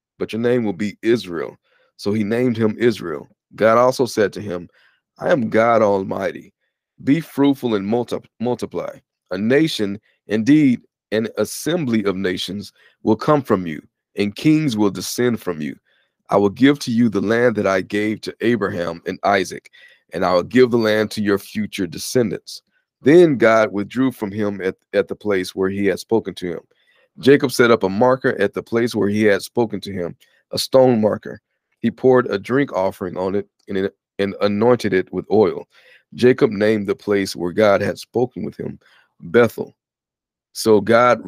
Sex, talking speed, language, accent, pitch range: male, 175 wpm, English, American, 100-125 Hz